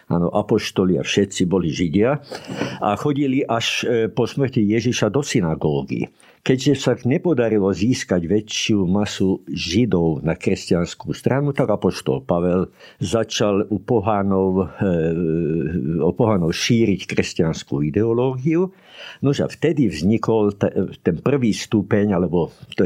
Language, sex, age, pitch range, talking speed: Slovak, male, 60-79, 100-135 Hz, 110 wpm